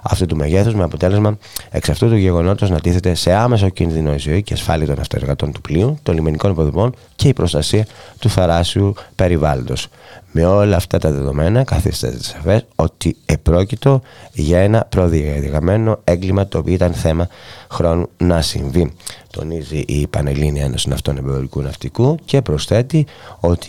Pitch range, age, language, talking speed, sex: 80-105 Hz, 30-49, Greek, 150 wpm, male